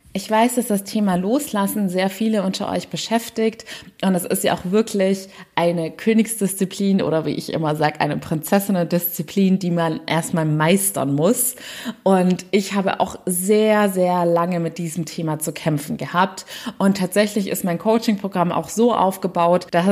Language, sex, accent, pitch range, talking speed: German, female, German, 175-220 Hz, 160 wpm